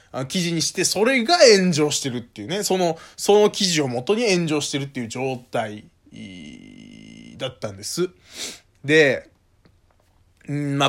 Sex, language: male, Japanese